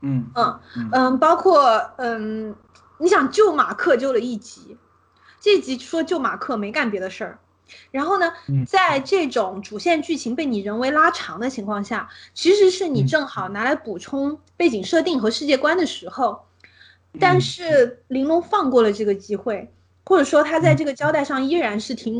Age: 20-39